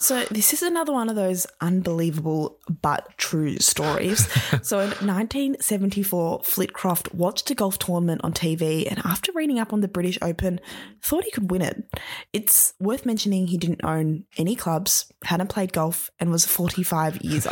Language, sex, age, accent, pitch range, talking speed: English, female, 10-29, Australian, 170-205 Hz, 170 wpm